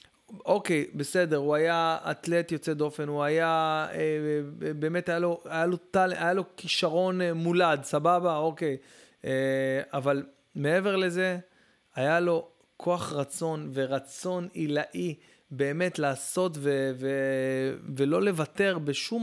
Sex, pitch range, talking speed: male, 135-170 Hz, 135 wpm